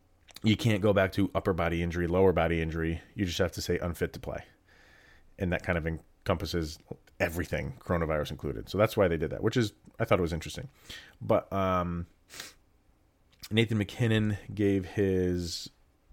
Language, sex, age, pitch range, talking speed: English, male, 30-49, 85-105 Hz, 170 wpm